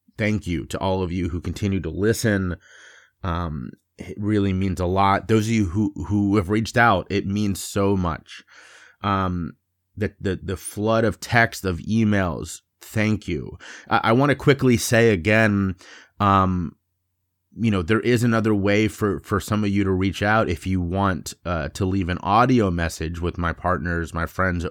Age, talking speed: 30-49, 180 wpm